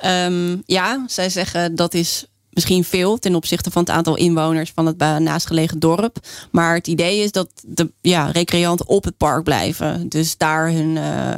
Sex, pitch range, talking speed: female, 160-180 Hz, 165 wpm